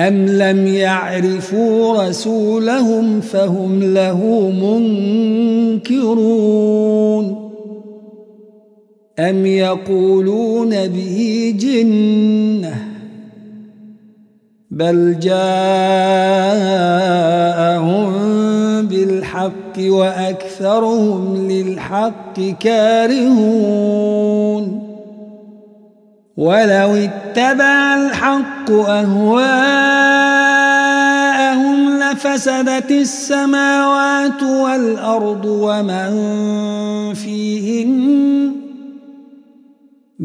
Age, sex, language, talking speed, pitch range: 50-69, male, Arabic, 40 wpm, 195-225 Hz